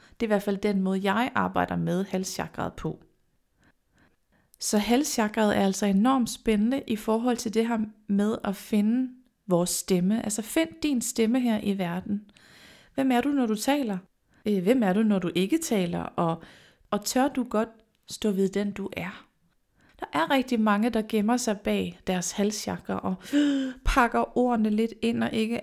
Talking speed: 180 wpm